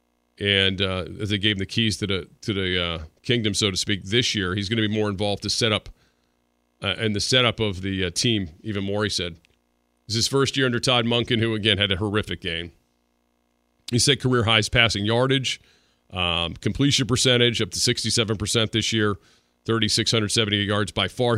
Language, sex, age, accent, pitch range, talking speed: English, male, 40-59, American, 90-115 Hz, 200 wpm